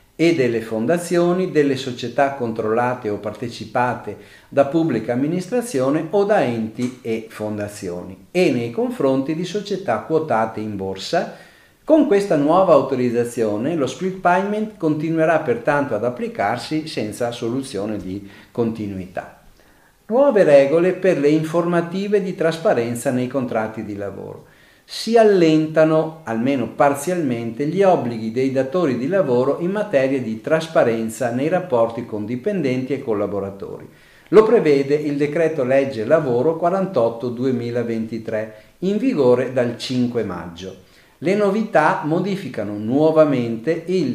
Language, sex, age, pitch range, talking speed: Italian, male, 40-59, 115-170 Hz, 120 wpm